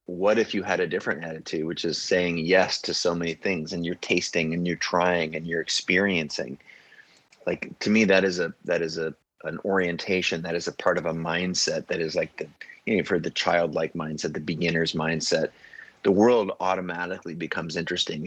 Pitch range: 85-100 Hz